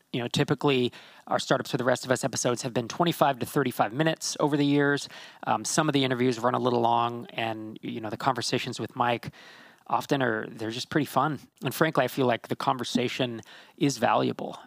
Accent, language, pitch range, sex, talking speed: American, English, 120-145 Hz, male, 210 wpm